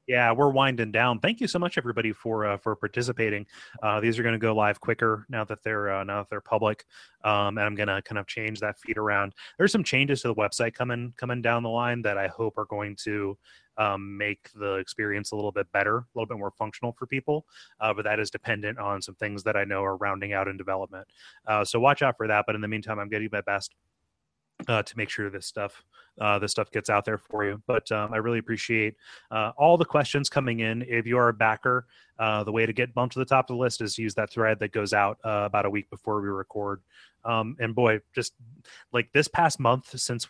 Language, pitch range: English, 105-120 Hz